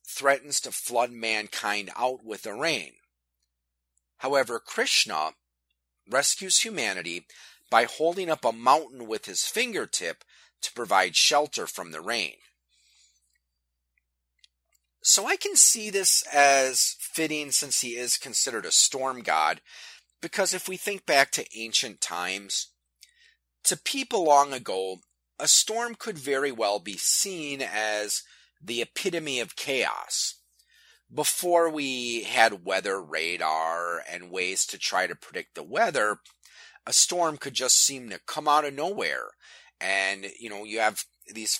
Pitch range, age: 95-155 Hz, 30-49